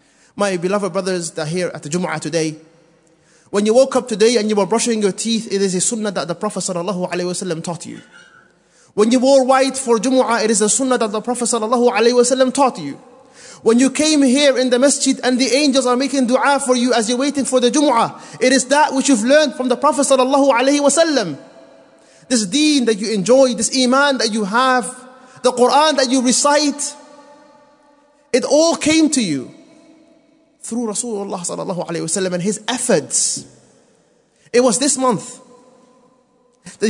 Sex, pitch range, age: male, 205-270 Hz, 30-49